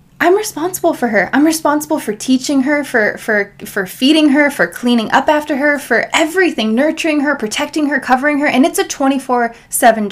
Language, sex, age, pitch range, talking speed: English, female, 20-39, 215-280 Hz, 185 wpm